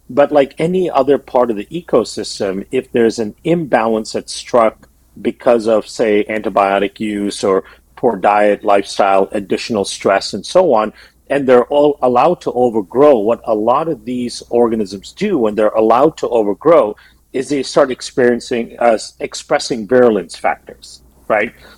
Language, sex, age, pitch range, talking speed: English, male, 50-69, 105-135 Hz, 150 wpm